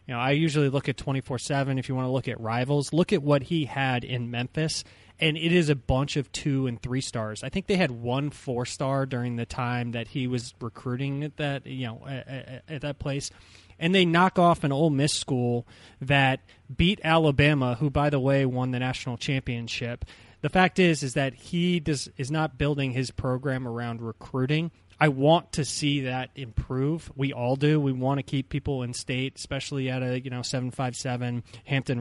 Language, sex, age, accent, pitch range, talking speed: English, male, 20-39, American, 125-150 Hz, 215 wpm